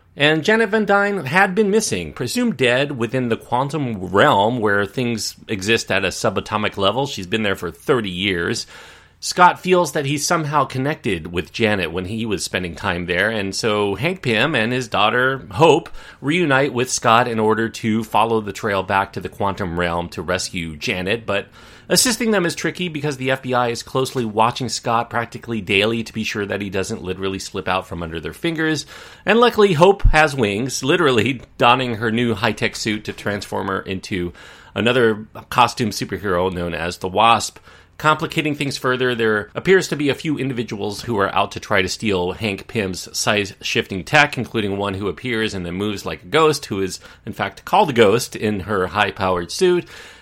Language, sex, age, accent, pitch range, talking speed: English, male, 30-49, American, 100-140 Hz, 185 wpm